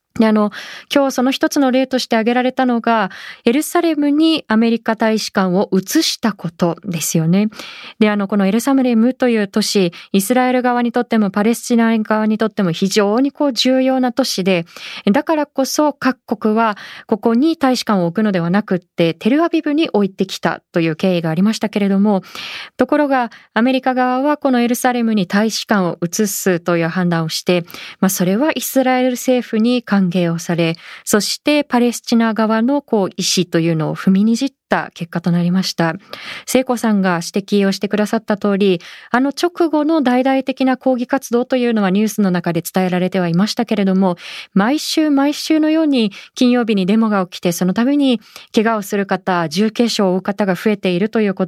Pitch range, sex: 195-255 Hz, female